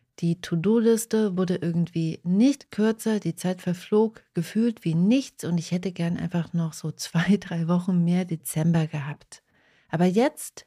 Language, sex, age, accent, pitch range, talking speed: German, female, 40-59, German, 160-200 Hz, 150 wpm